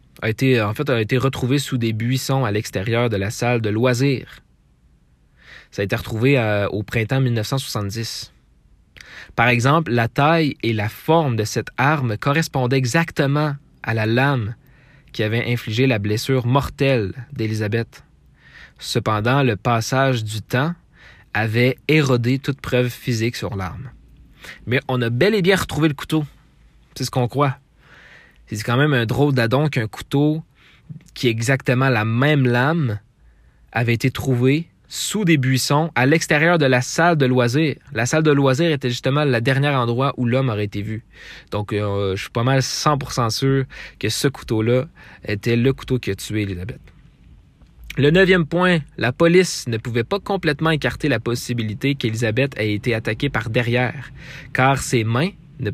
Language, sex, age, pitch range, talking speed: French, male, 20-39, 115-140 Hz, 160 wpm